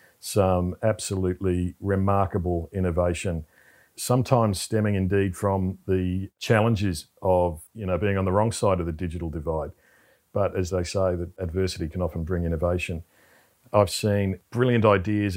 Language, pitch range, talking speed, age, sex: English, 85-100 Hz, 140 wpm, 40-59, male